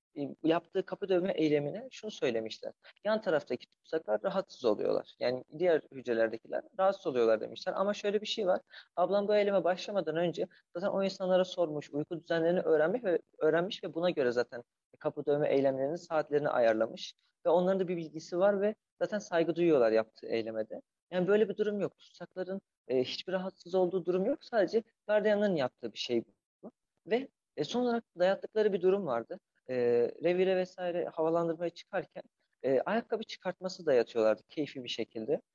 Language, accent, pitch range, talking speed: Turkish, native, 145-200 Hz, 155 wpm